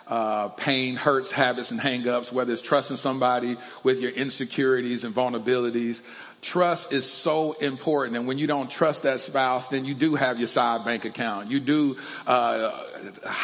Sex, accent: male, American